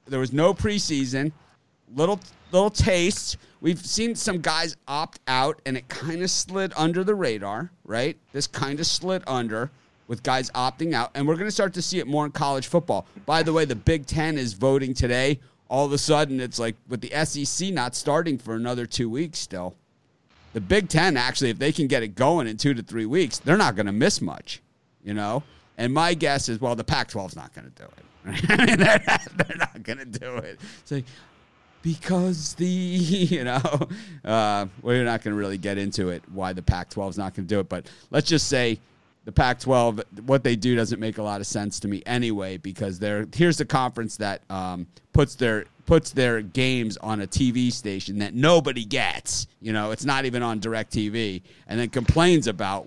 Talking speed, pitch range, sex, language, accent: 210 wpm, 110-155 Hz, male, English, American